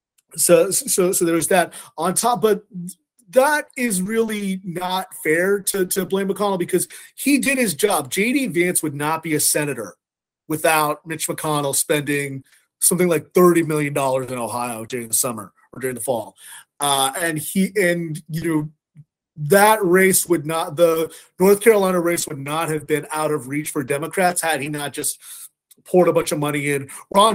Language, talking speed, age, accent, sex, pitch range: English, 180 wpm, 30-49, American, male, 145-185 Hz